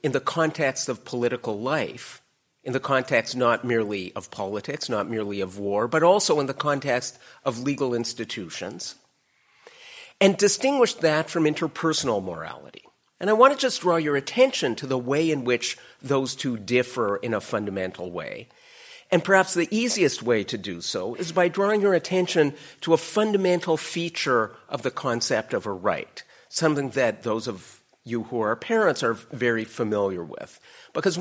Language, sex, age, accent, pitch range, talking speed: English, male, 50-69, American, 120-170 Hz, 165 wpm